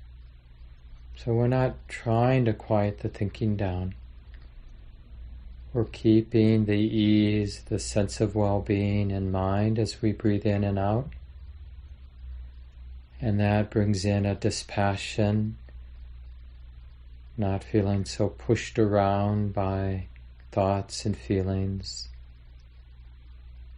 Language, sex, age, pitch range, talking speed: English, male, 40-59, 85-110 Hz, 100 wpm